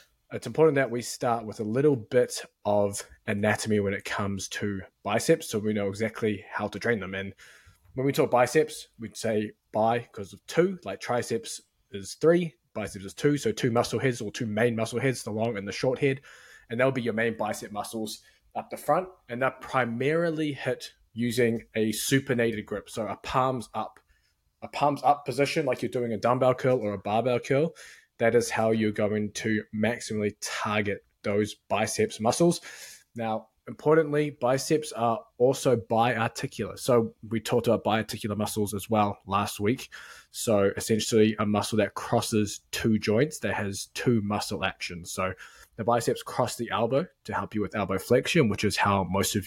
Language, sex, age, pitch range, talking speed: English, male, 20-39, 105-125 Hz, 180 wpm